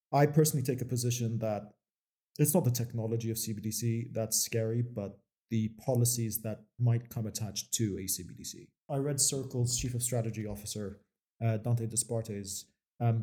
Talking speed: 160 wpm